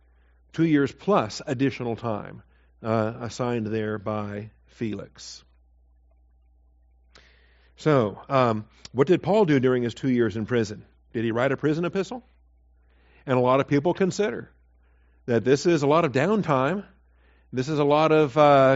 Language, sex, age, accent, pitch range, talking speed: English, male, 50-69, American, 110-145 Hz, 150 wpm